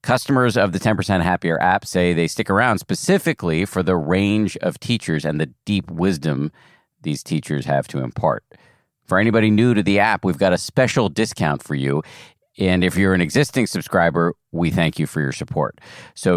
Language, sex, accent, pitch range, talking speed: English, male, American, 80-110 Hz, 185 wpm